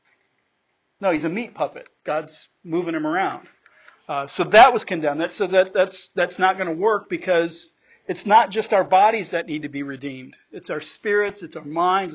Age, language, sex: 50-69, English, male